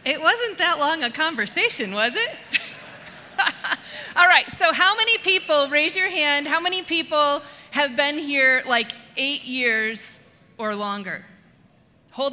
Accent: American